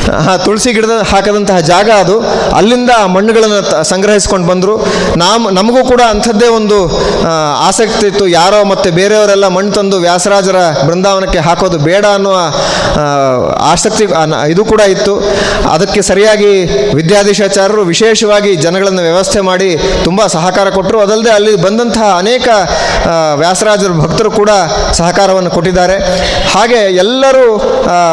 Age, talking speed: 30-49, 110 wpm